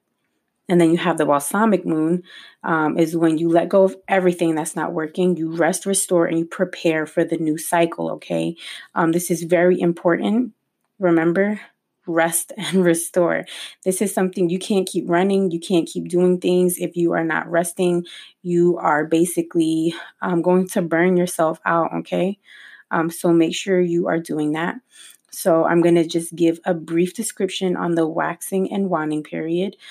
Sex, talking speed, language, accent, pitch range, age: female, 175 wpm, English, American, 165-190 Hz, 20-39